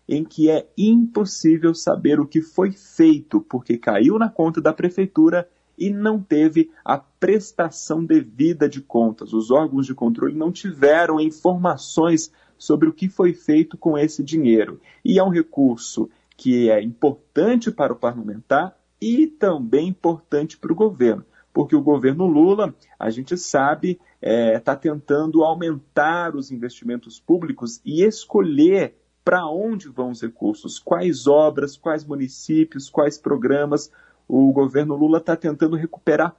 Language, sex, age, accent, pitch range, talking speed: Portuguese, male, 40-59, Brazilian, 135-185 Hz, 140 wpm